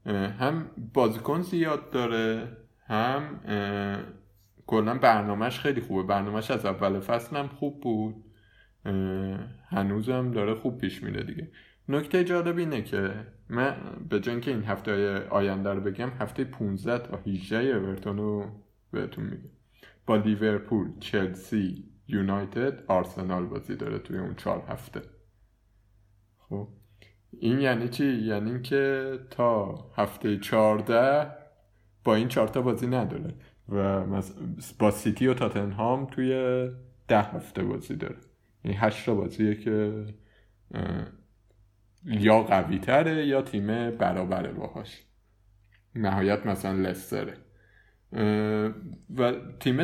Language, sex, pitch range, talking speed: Persian, male, 100-125 Hz, 115 wpm